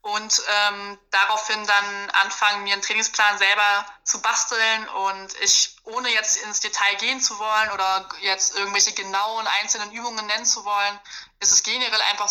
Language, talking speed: German, 160 wpm